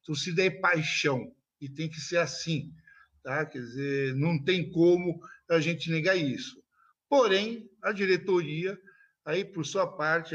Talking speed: 150 wpm